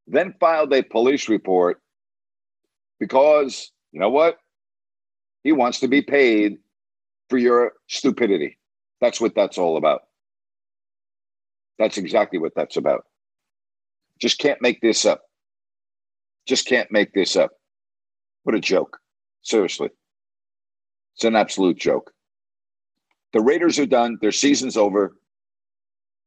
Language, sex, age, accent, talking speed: English, male, 50-69, American, 120 wpm